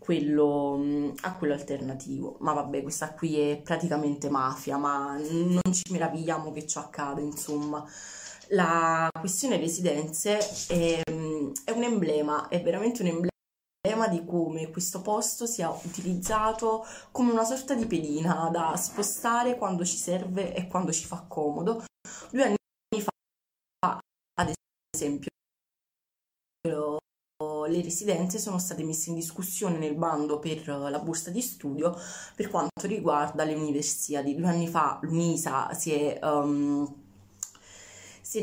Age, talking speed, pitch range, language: 20-39, 130 wpm, 150-180 Hz, Italian